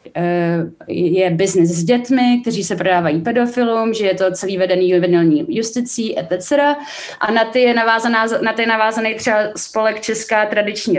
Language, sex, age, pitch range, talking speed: Czech, female, 20-39, 180-220 Hz, 150 wpm